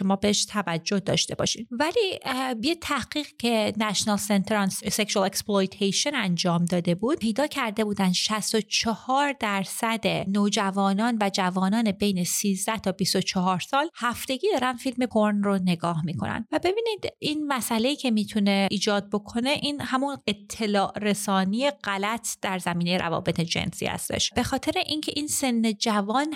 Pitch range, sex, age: 195-255 Hz, female, 30-49